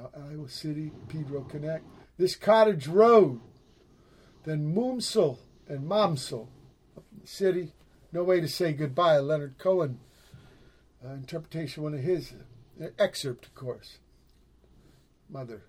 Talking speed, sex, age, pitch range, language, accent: 120 wpm, male, 50-69, 125-195 Hz, English, American